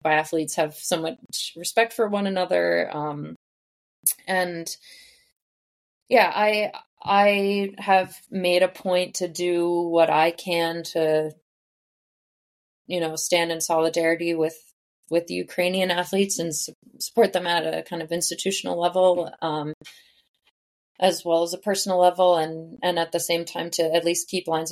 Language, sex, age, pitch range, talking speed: English, female, 20-39, 160-185 Hz, 145 wpm